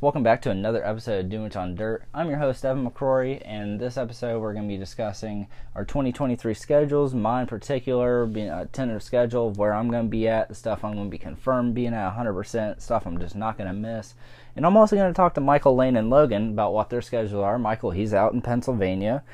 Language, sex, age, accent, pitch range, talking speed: English, male, 20-39, American, 105-125 Hz, 240 wpm